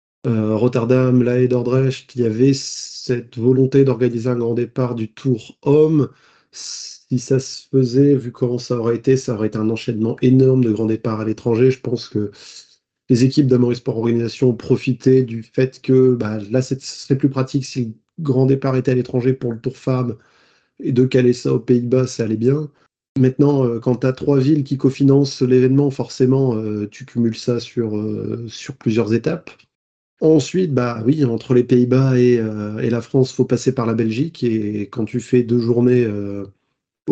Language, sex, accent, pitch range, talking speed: French, male, French, 115-130 Hz, 190 wpm